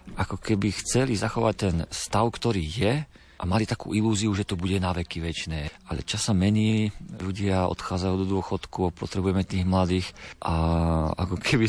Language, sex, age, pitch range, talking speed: Slovak, male, 40-59, 85-100 Hz, 160 wpm